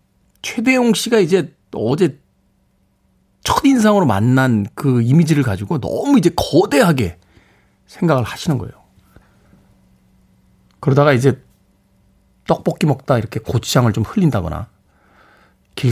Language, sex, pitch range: Korean, male, 105-165 Hz